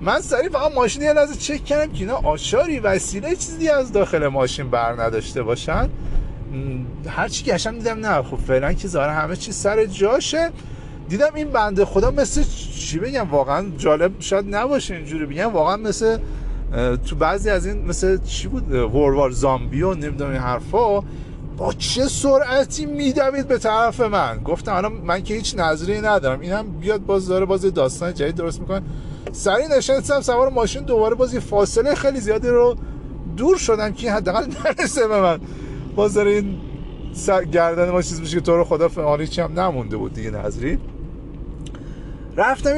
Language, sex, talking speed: Persian, male, 160 wpm